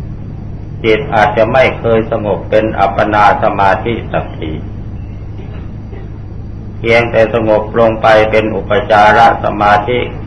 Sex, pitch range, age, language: male, 100-110 Hz, 60-79, Thai